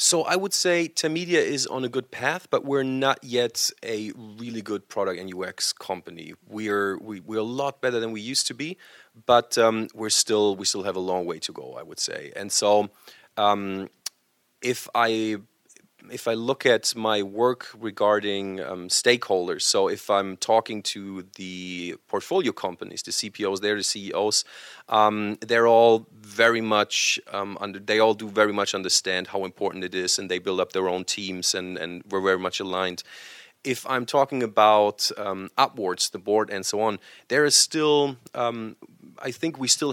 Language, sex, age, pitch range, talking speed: English, male, 30-49, 95-120 Hz, 185 wpm